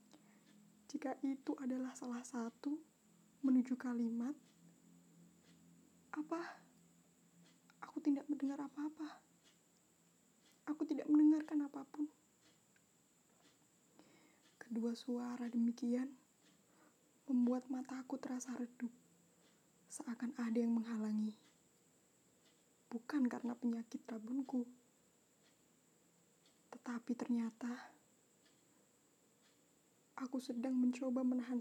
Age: 20-39